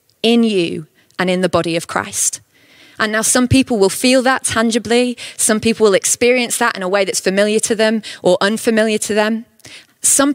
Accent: British